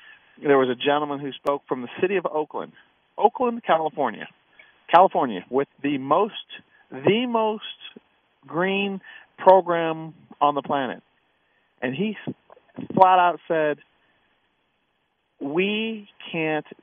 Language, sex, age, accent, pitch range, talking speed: English, male, 40-59, American, 125-165 Hz, 110 wpm